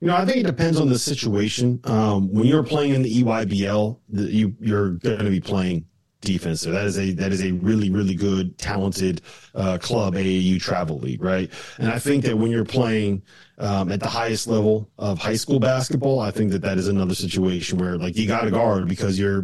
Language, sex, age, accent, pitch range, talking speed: English, male, 30-49, American, 95-115 Hz, 220 wpm